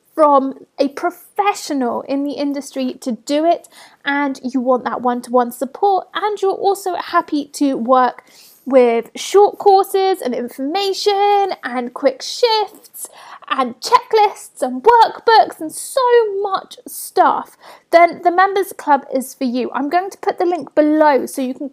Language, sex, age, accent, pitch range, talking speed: English, female, 30-49, British, 265-365 Hz, 150 wpm